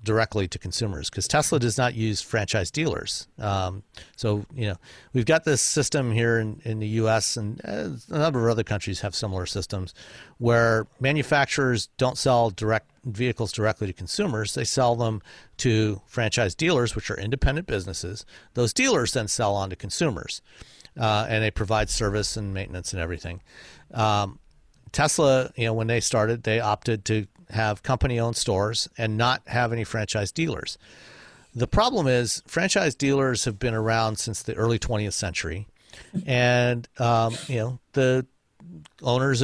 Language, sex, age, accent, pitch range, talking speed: English, male, 50-69, American, 105-130 Hz, 160 wpm